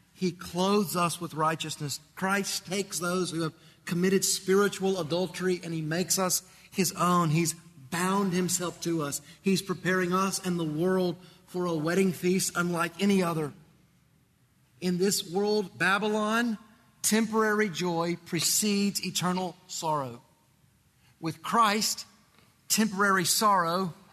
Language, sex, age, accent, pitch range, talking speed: English, male, 30-49, American, 160-205 Hz, 125 wpm